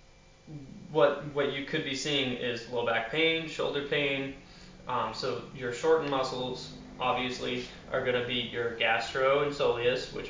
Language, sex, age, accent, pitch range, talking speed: English, male, 20-39, American, 120-140 Hz, 155 wpm